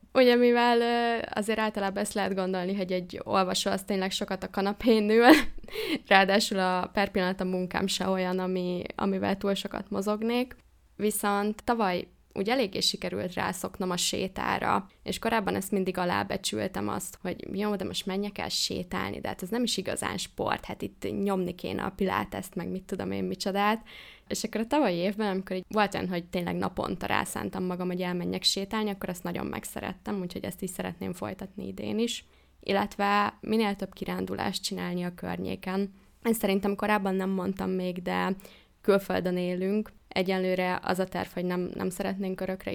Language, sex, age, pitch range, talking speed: Hungarian, female, 20-39, 185-205 Hz, 170 wpm